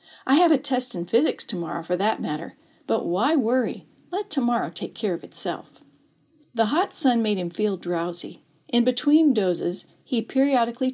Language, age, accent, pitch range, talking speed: English, 50-69, American, 185-265 Hz, 170 wpm